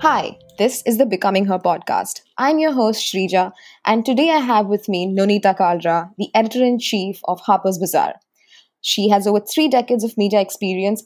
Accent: Indian